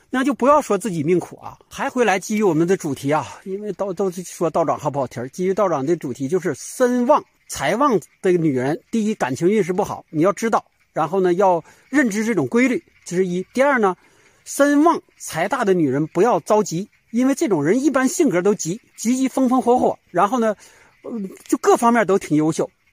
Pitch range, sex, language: 180-260 Hz, male, Chinese